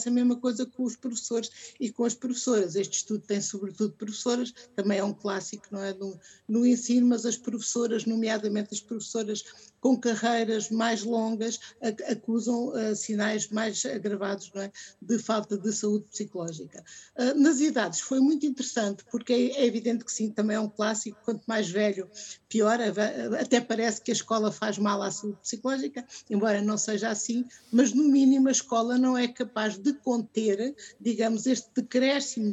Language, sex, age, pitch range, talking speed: Portuguese, female, 50-69, 210-250 Hz, 170 wpm